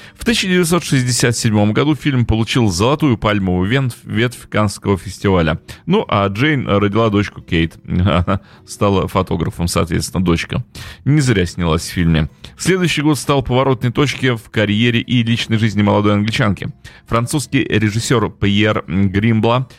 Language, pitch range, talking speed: Russian, 100-130 Hz, 130 wpm